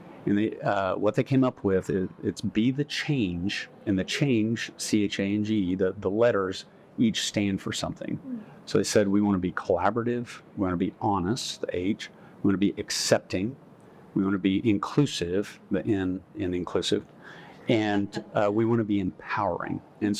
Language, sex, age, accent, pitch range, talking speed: English, male, 50-69, American, 95-115 Hz, 160 wpm